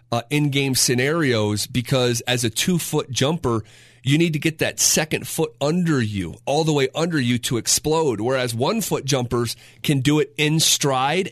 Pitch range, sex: 125-155 Hz, male